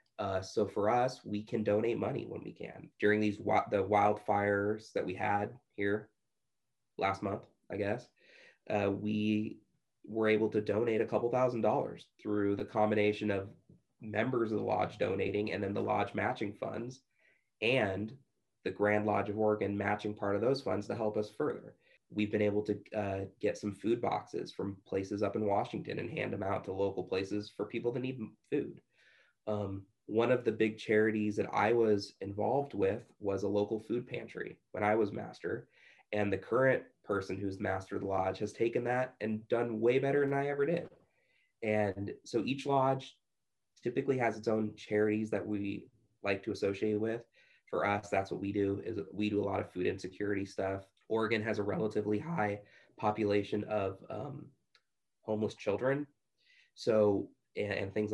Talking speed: 180 wpm